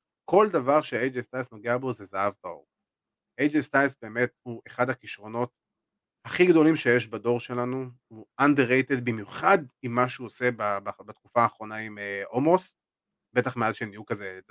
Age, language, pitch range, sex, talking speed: 30-49, Hebrew, 115-140 Hz, male, 170 wpm